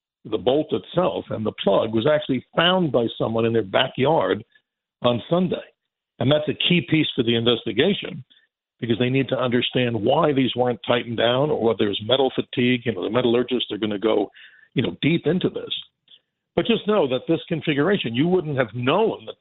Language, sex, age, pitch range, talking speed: English, male, 60-79, 115-145 Hz, 195 wpm